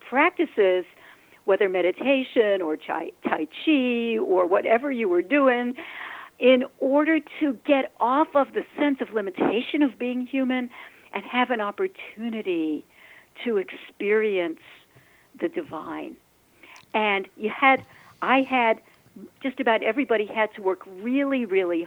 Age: 60-79